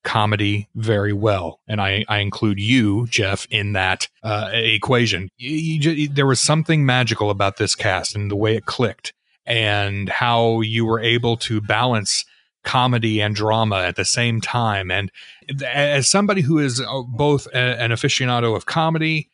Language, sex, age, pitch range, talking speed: English, male, 30-49, 105-135 Hz, 160 wpm